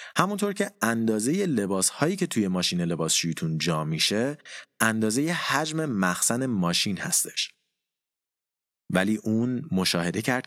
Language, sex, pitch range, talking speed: Persian, male, 90-125 Hz, 115 wpm